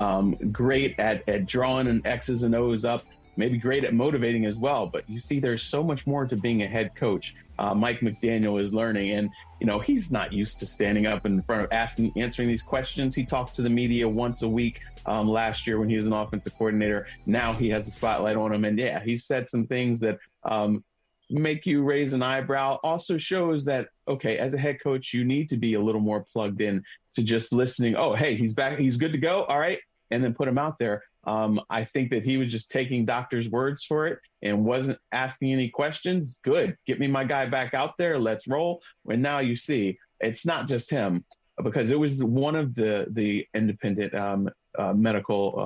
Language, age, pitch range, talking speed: English, 30-49, 110-140 Hz, 220 wpm